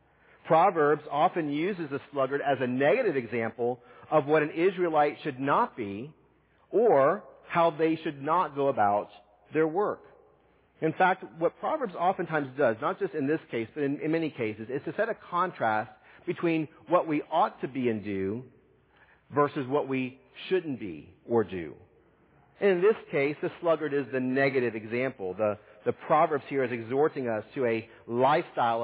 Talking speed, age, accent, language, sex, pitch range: 165 wpm, 40-59, American, English, male, 115-155 Hz